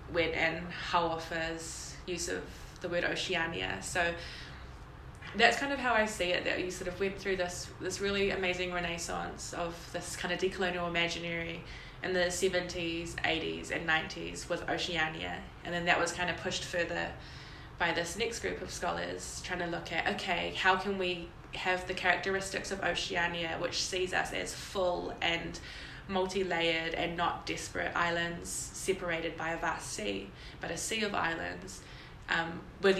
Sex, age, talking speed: female, 20-39, 165 wpm